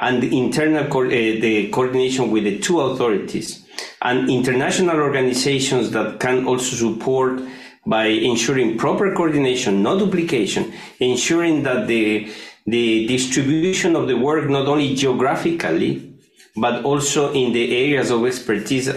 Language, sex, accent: Italian, male, native